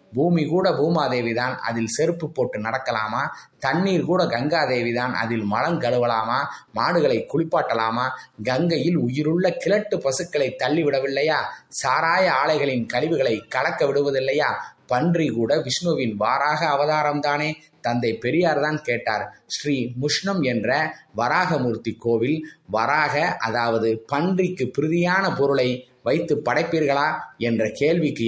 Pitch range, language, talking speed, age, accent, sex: 120-160 Hz, Tamil, 100 wpm, 20-39, native, male